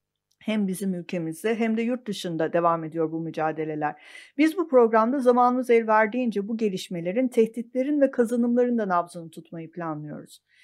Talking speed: 145 wpm